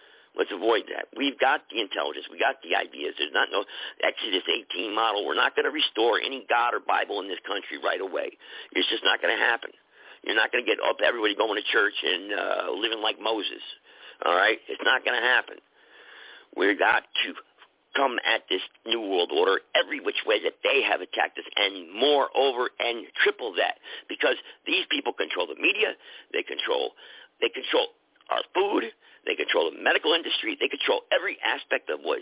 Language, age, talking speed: English, 50-69, 195 wpm